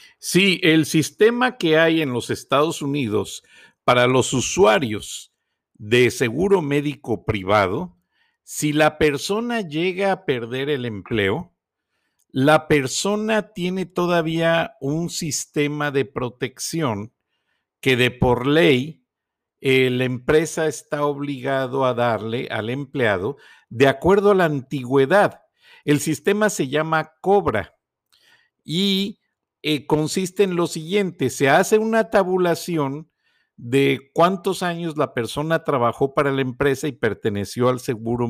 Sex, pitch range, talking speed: male, 130-175 Hz, 125 wpm